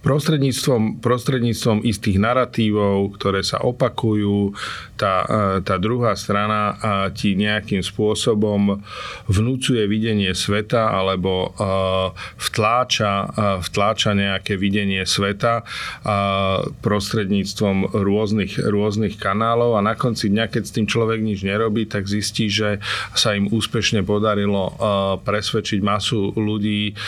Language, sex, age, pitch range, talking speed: Slovak, male, 40-59, 100-115 Hz, 115 wpm